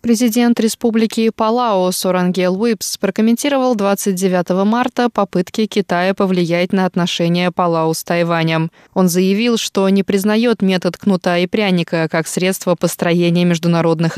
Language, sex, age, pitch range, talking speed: Russian, female, 20-39, 175-210 Hz, 125 wpm